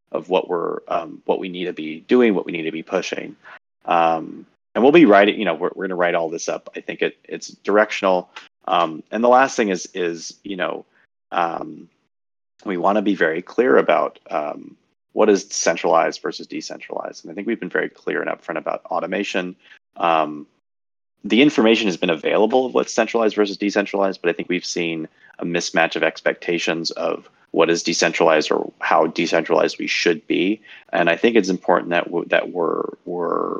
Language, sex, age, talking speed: English, male, 30-49, 190 wpm